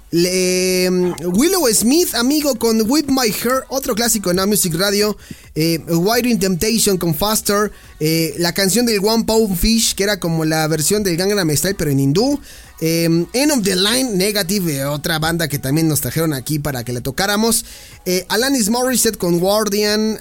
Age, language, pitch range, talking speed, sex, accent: 30-49, Spanish, 165-225 Hz, 185 wpm, male, Mexican